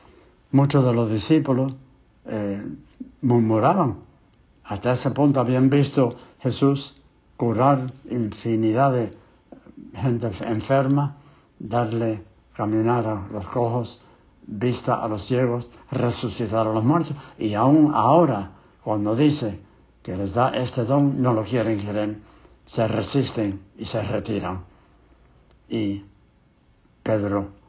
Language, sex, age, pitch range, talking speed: English, male, 70-89, 105-130 Hz, 110 wpm